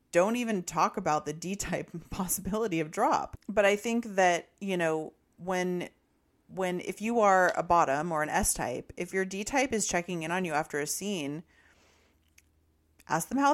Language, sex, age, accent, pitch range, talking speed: English, female, 30-49, American, 145-185 Hz, 175 wpm